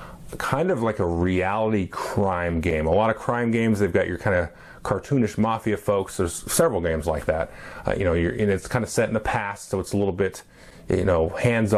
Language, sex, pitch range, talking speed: English, male, 90-110 Hz, 230 wpm